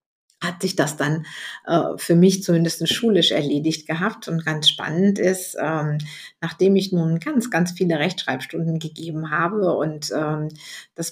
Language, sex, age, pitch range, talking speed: German, female, 50-69, 160-190 Hz, 150 wpm